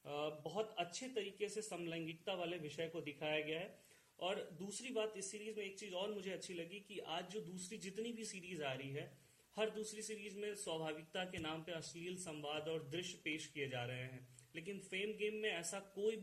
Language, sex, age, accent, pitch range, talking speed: Hindi, male, 30-49, native, 155-190 Hz, 205 wpm